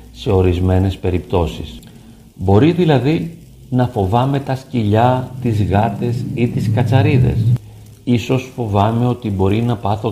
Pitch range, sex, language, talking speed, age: 100-125 Hz, male, Greek, 120 wpm, 50-69